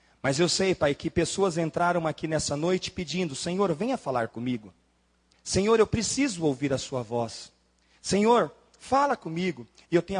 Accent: Brazilian